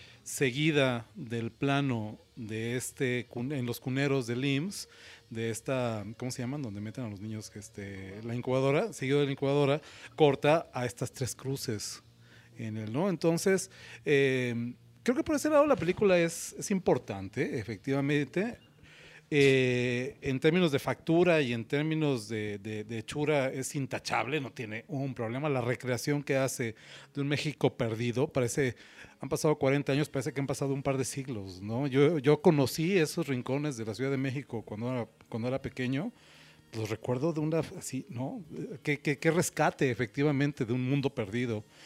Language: Spanish